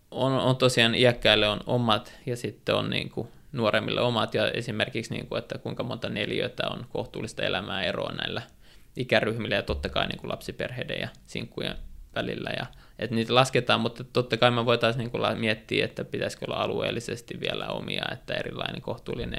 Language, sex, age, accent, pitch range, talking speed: Finnish, male, 20-39, native, 110-125 Hz, 170 wpm